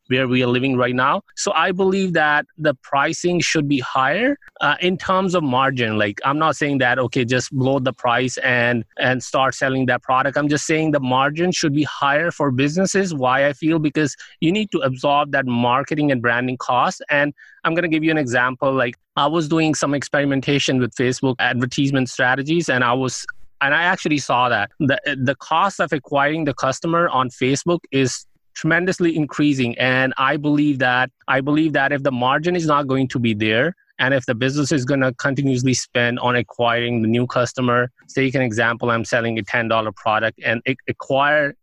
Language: English